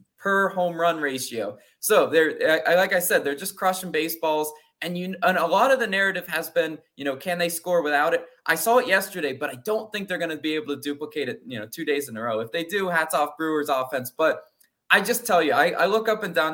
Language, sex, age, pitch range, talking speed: English, male, 20-39, 140-185 Hz, 260 wpm